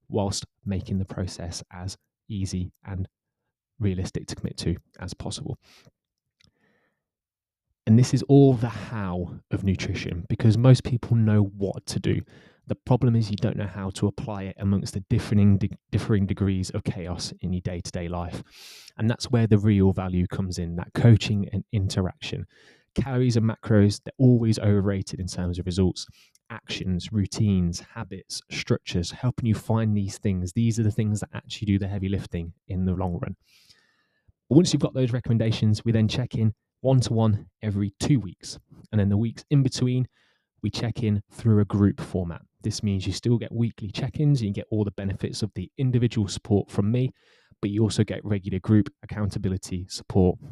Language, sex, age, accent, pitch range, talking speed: English, male, 20-39, British, 95-115 Hz, 175 wpm